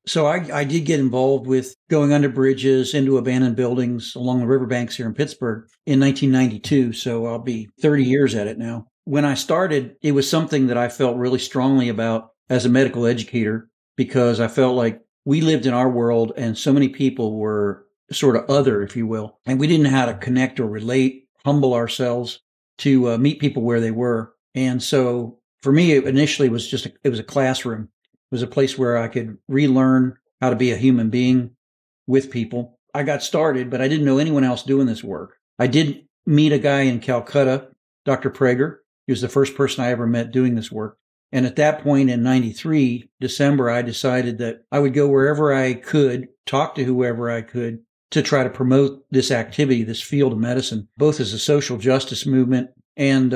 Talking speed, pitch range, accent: 205 wpm, 120-135 Hz, American